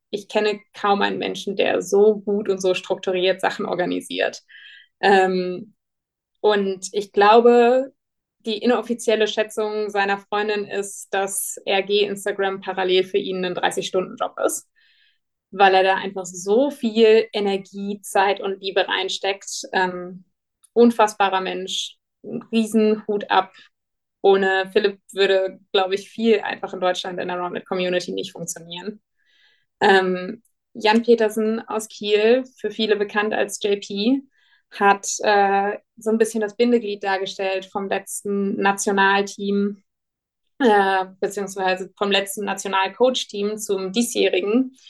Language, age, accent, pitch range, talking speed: German, 20-39, German, 190-215 Hz, 120 wpm